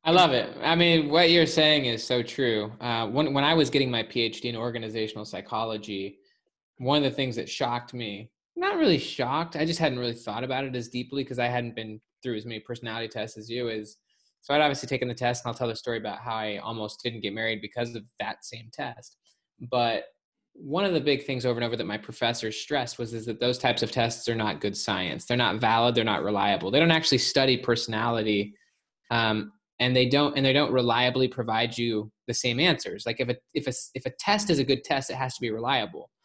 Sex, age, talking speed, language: male, 20-39, 235 wpm, English